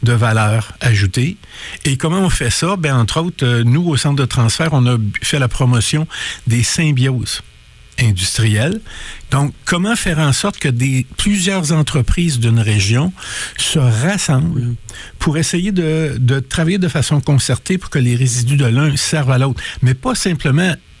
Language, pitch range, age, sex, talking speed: French, 120-155 Hz, 60-79, male, 165 wpm